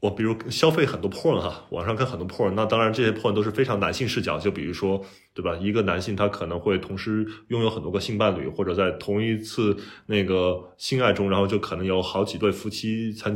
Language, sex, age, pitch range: Chinese, male, 20-39, 95-120 Hz